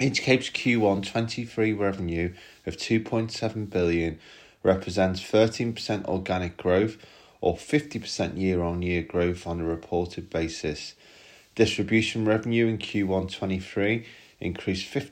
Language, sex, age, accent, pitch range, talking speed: English, male, 30-49, British, 85-105 Hz, 100 wpm